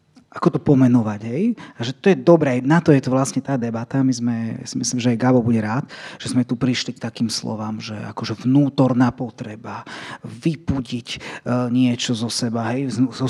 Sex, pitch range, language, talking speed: male, 125-165 Hz, Slovak, 185 wpm